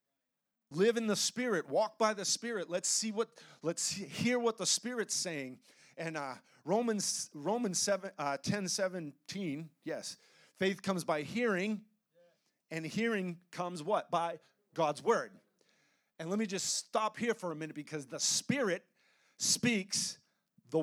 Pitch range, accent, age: 165-215 Hz, American, 40-59